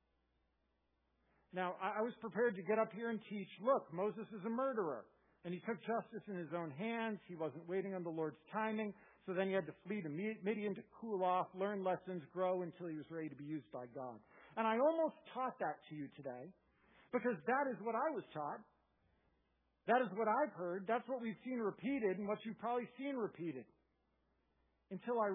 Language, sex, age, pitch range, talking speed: English, male, 50-69, 160-225 Hz, 205 wpm